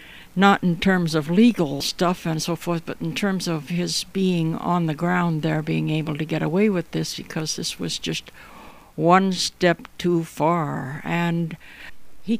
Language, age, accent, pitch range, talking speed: English, 60-79, American, 150-185 Hz, 175 wpm